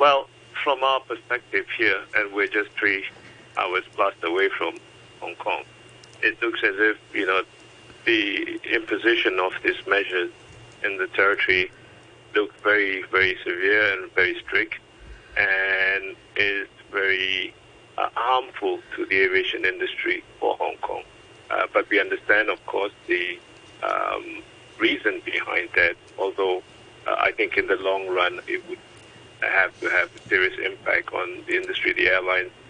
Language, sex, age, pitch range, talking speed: English, male, 60-79, 345-420 Hz, 145 wpm